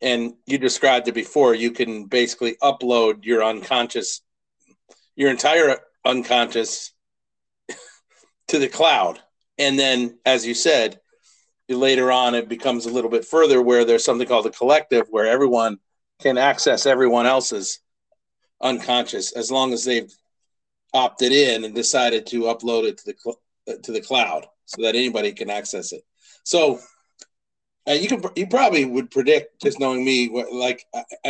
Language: English